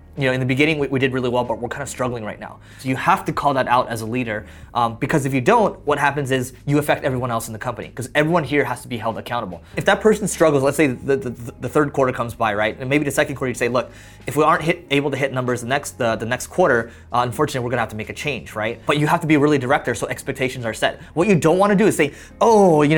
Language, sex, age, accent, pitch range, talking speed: English, male, 20-39, American, 120-150 Hz, 310 wpm